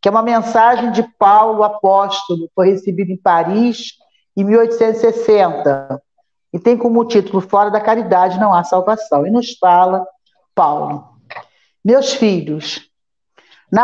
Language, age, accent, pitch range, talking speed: Portuguese, 50-69, Brazilian, 185-230 Hz, 130 wpm